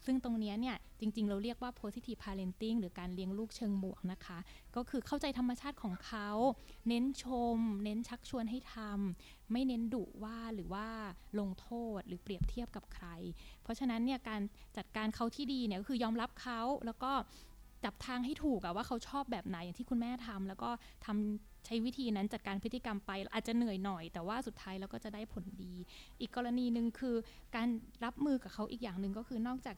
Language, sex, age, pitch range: Thai, female, 20-39, 200-245 Hz